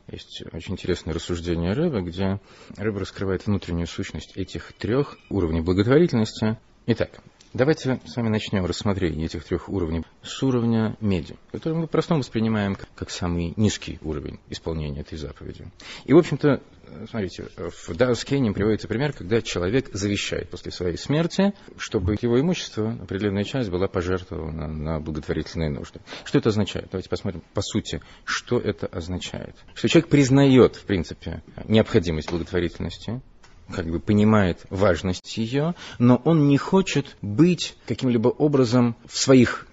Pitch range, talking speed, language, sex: 90-125 Hz, 140 wpm, Russian, male